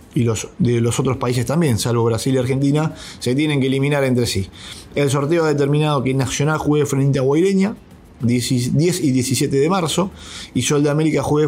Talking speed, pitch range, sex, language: 195 wpm, 120-140 Hz, male, English